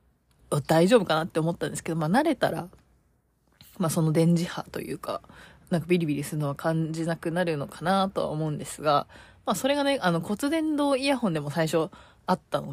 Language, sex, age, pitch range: Japanese, female, 20-39, 155-235 Hz